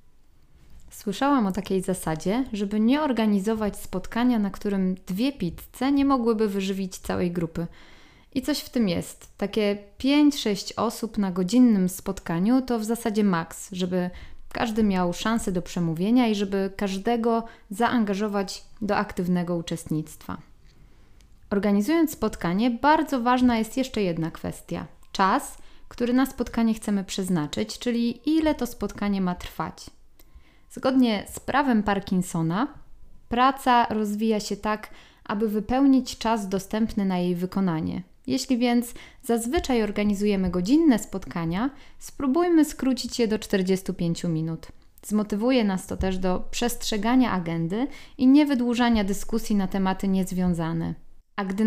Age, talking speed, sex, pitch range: 20-39, 125 wpm, female, 190-245 Hz